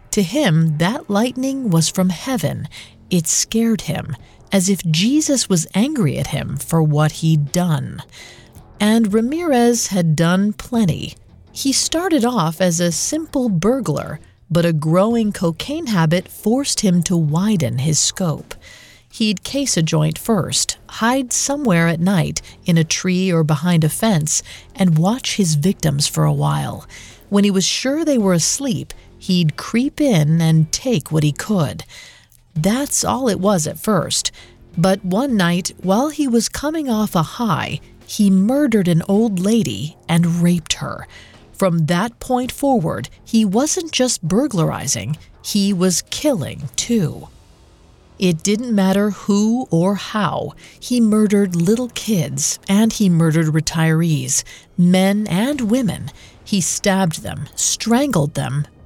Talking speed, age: 145 wpm, 40-59